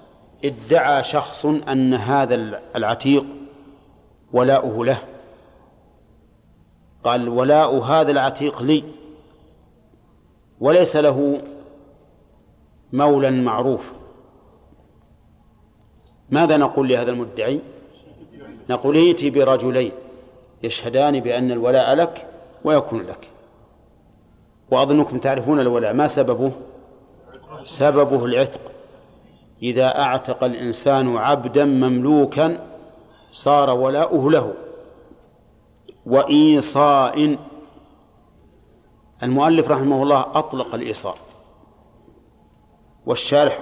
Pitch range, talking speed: 125-150 Hz, 70 wpm